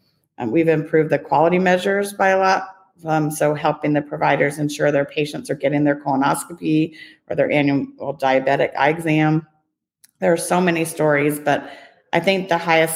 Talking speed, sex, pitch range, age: 170 wpm, female, 140-160 Hz, 40-59